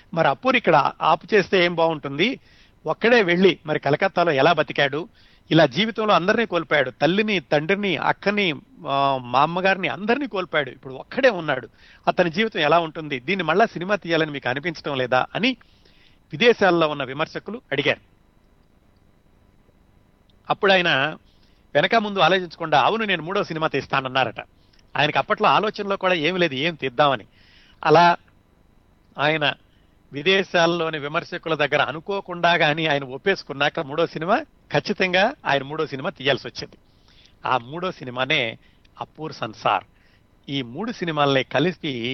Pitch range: 135-180 Hz